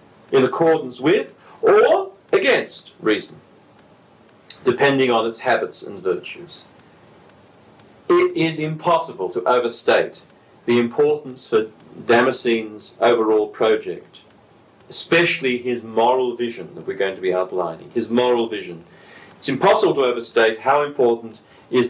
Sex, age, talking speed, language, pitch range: male, 40-59, 120 wpm, English, 115-165 Hz